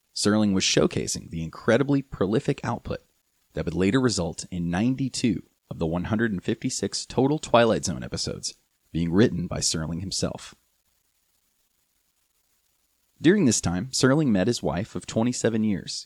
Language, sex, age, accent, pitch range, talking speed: English, male, 30-49, American, 85-110 Hz, 130 wpm